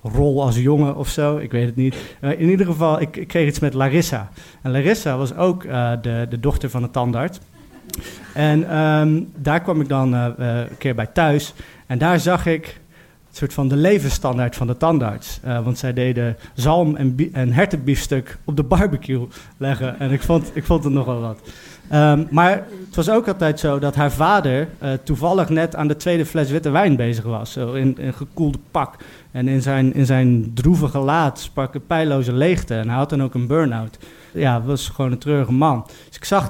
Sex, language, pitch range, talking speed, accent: male, Dutch, 125-160 Hz, 215 wpm, Dutch